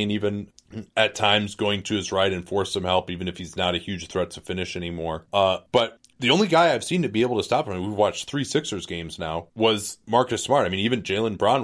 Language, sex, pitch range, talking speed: English, male, 90-110 Hz, 260 wpm